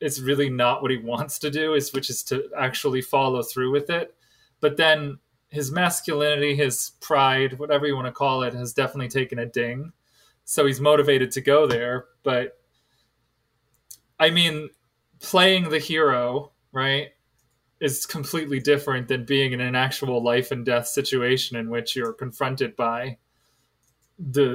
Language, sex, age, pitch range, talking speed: English, male, 20-39, 120-150 Hz, 160 wpm